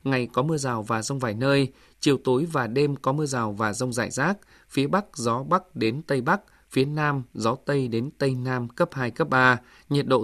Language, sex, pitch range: Vietnamese, male, 125-150 Hz